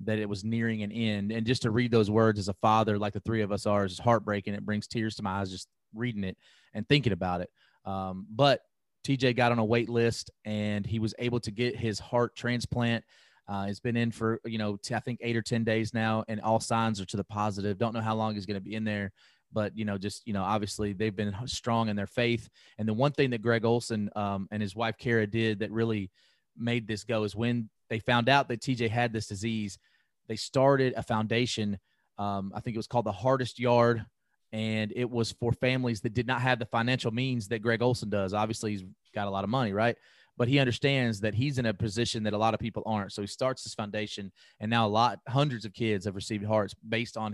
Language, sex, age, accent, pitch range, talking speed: English, male, 30-49, American, 105-120 Hz, 245 wpm